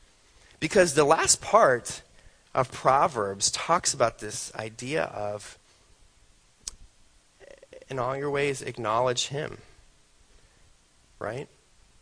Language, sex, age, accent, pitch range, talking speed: English, male, 30-49, American, 105-140 Hz, 90 wpm